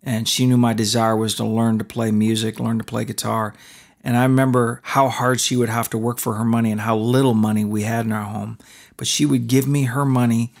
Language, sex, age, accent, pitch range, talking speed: English, male, 40-59, American, 120-155 Hz, 250 wpm